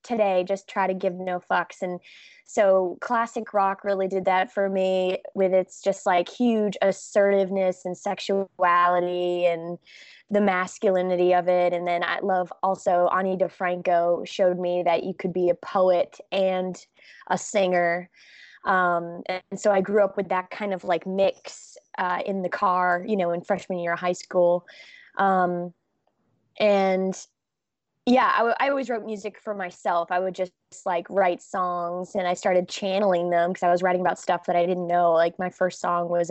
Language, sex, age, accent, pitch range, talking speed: English, female, 20-39, American, 175-195 Hz, 175 wpm